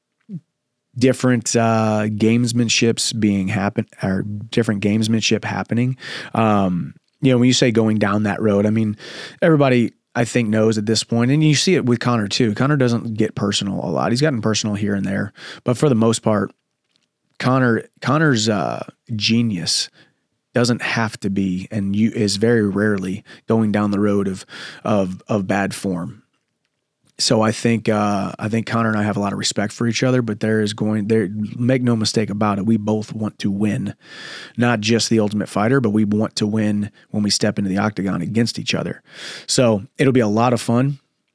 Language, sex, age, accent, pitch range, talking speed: English, male, 30-49, American, 105-120 Hz, 190 wpm